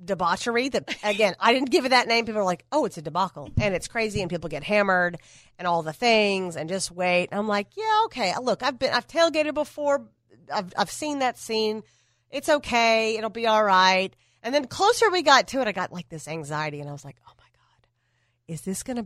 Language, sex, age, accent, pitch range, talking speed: English, female, 40-59, American, 165-245 Hz, 230 wpm